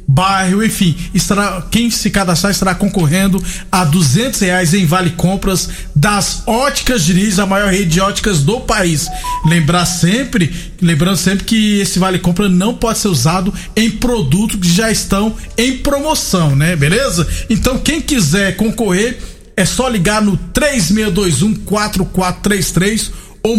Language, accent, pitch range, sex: Portuguese, Brazilian, 175-215 Hz, male